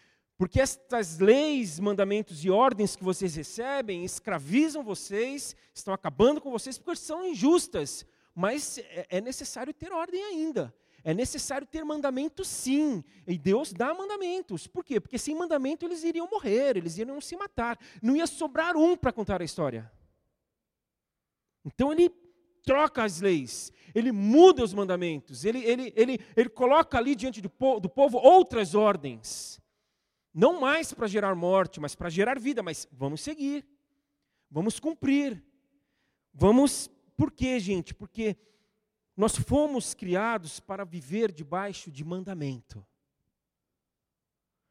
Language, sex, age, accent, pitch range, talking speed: Portuguese, male, 40-59, Brazilian, 180-285 Hz, 140 wpm